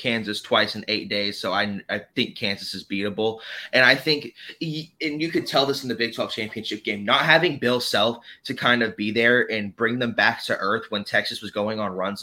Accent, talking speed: American, 230 wpm